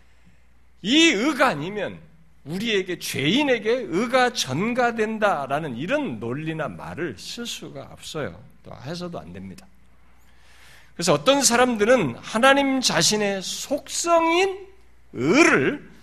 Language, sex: Korean, male